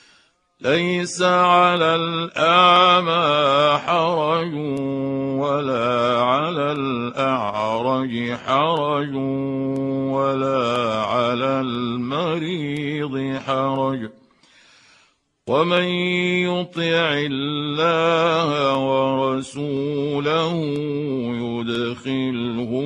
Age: 60-79